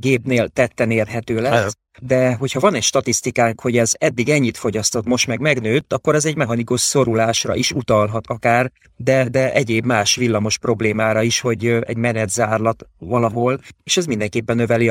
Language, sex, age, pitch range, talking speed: Hungarian, male, 30-49, 115-135 Hz, 165 wpm